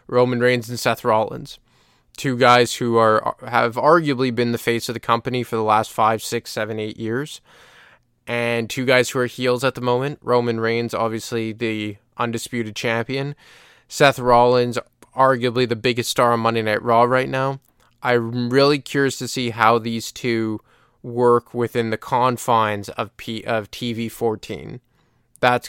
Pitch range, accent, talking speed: 115-125 Hz, American, 160 wpm